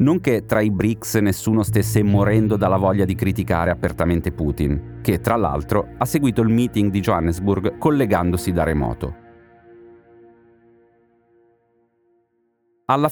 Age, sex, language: 40-59, male, Italian